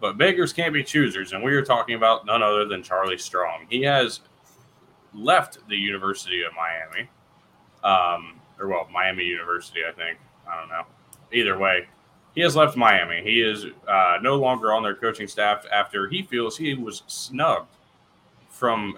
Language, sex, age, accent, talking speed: English, male, 20-39, American, 170 wpm